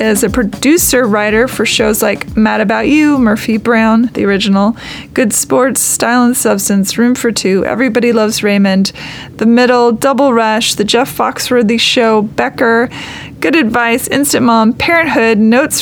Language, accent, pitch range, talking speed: English, American, 215-245 Hz, 150 wpm